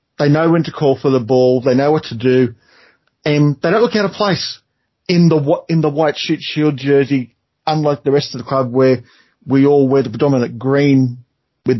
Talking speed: 215 wpm